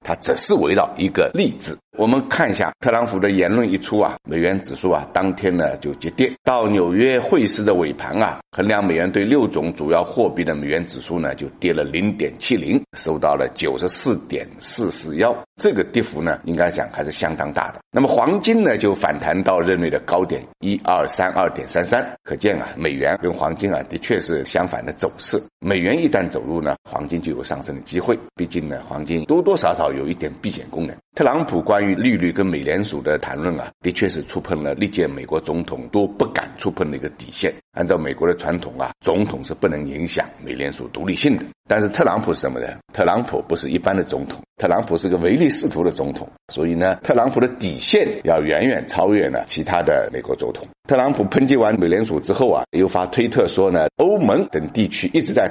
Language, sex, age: Chinese, male, 60-79